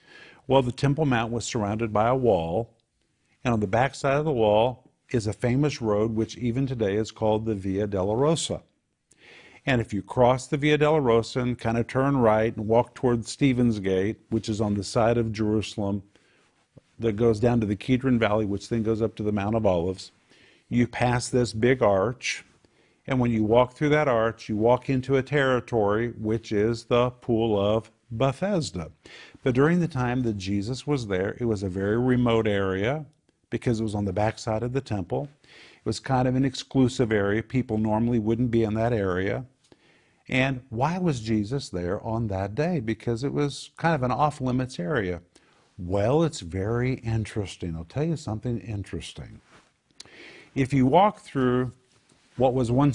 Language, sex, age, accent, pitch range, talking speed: English, male, 50-69, American, 110-130 Hz, 185 wpm